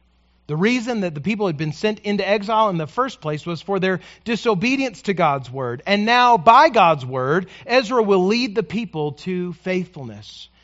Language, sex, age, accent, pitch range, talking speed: English, male, 40-59, American, 135-185 Hz, 185 wpm